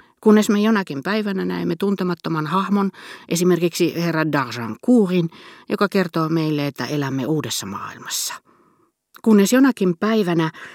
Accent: native